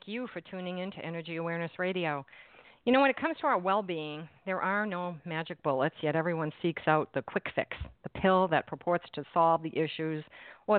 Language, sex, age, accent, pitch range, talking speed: English, female, 50-69, American, 155-185 Hz, 210 wpm